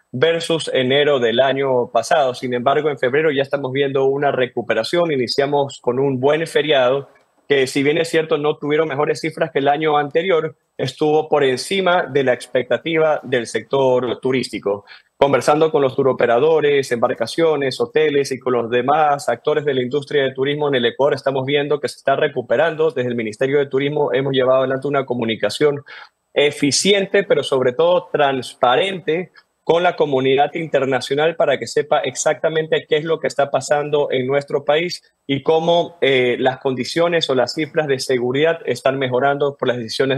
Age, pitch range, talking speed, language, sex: 30-49, 130-160 Hz, 170 wpm, English, male